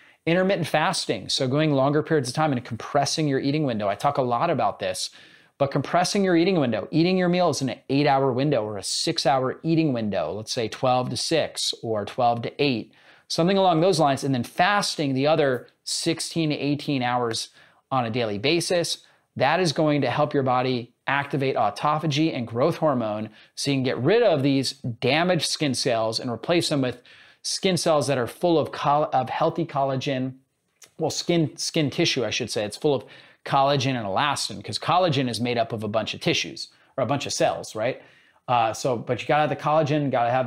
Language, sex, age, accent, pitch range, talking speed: English, male, 30-49, American, 125-160 Hz, 205 wpm